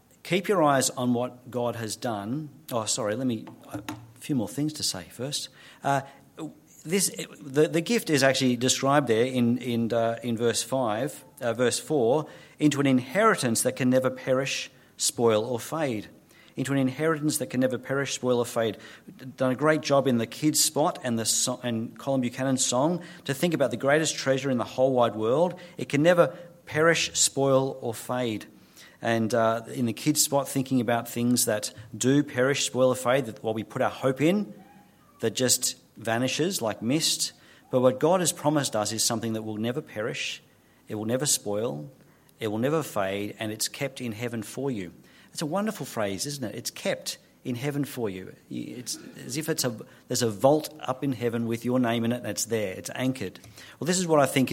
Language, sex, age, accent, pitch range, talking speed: English, male, 40-59, Australian, 115-145 Hz, 200 wpm